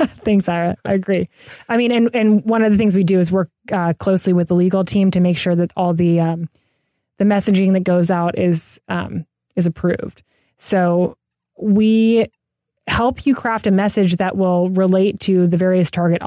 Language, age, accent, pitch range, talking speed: English, 20-39, American, 175-195 Hz, 190 wpm